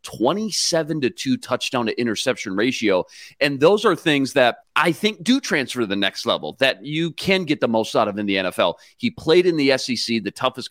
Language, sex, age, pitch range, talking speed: English, male, 30-49, 115-155 Hz, 215 wpm